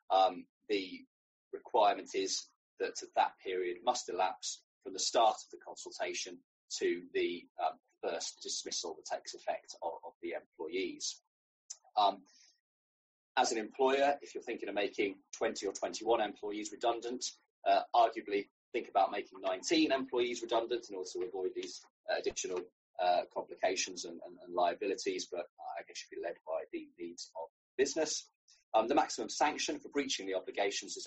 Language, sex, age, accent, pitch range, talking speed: English, male, 20-39, British, 335-400 Hz, 155 wpm